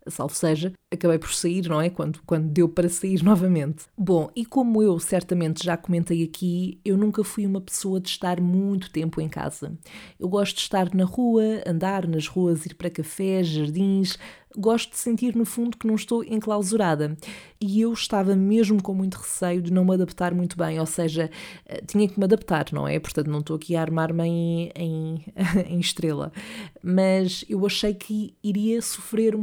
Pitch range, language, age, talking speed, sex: 175-205 Hz, Portuguese, 20-39, 185 wpm, female